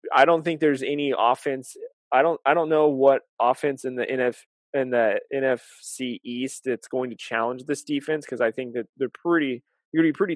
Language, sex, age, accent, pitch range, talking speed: English, male, 20-39, American, 125-145 Hz, 210 wpm